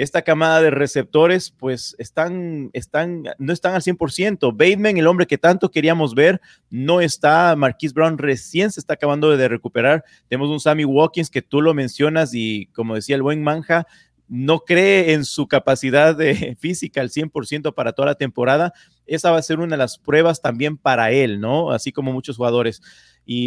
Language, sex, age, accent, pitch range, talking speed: Spanish, male, 40-59, Mexican, 130-160 Hz, 185 wpm